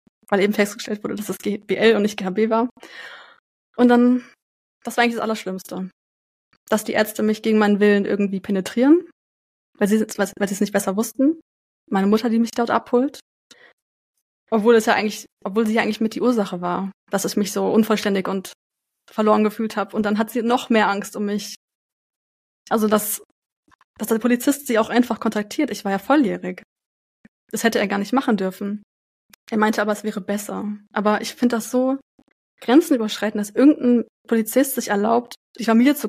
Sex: female